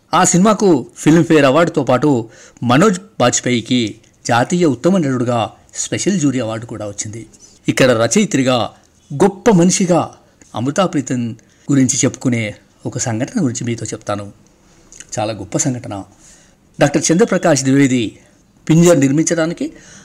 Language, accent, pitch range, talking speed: Telugu, native, 115-160 Hz, 105 wpm